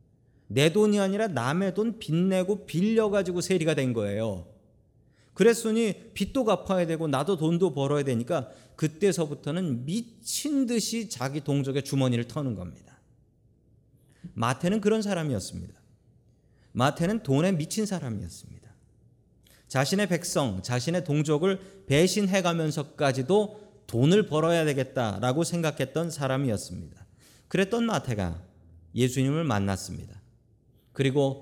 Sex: male